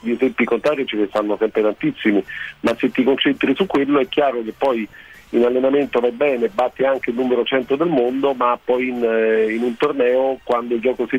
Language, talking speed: Italian, 210 wpm